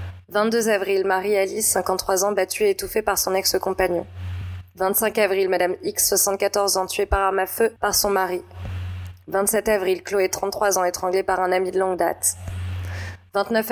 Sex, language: female, French